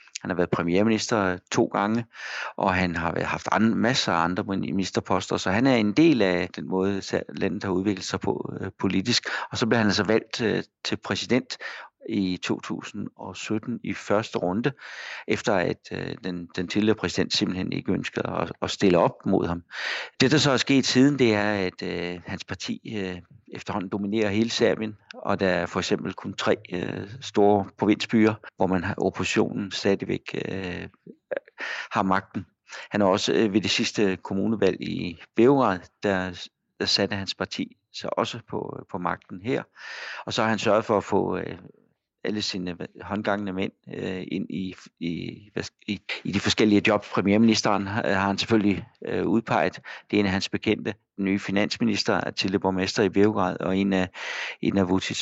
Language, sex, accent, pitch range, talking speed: Danish, male, native, 95-110 Hz, 170 wpm